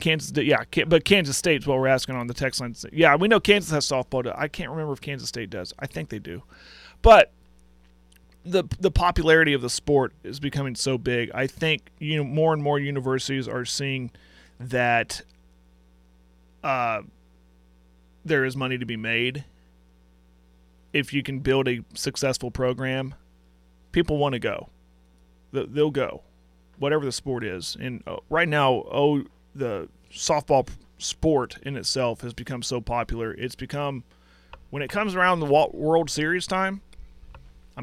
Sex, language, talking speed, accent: male, English, 160 wpm, American